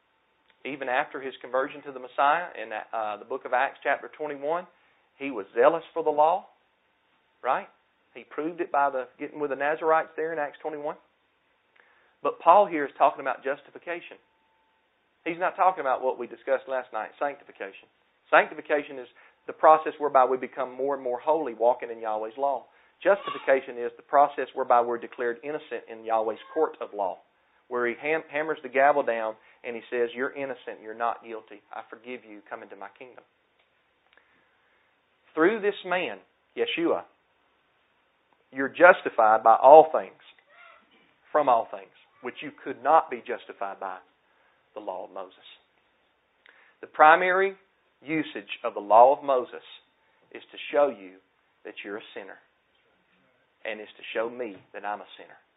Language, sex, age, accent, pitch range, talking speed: English, male, 40-59, American, 120-160 Hz, 160 wpm